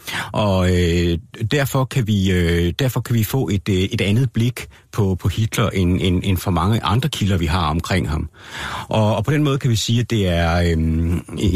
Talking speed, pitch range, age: 210 wpm, 90-115 Hz, 60-79